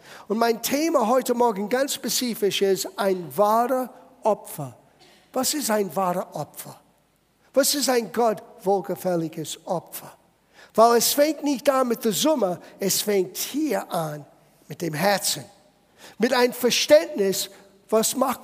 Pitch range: 200-310 Hz